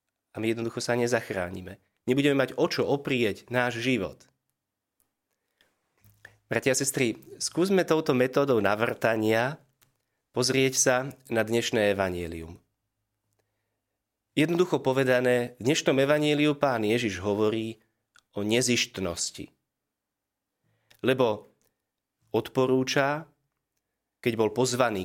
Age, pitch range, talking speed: 30-49, 110-145 Hz, 95 wpm